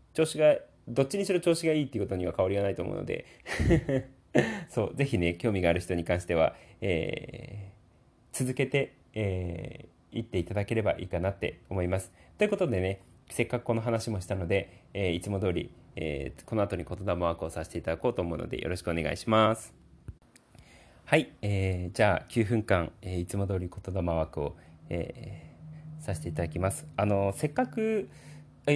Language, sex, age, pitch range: Japanese, male, 30-49, 85-120 Hz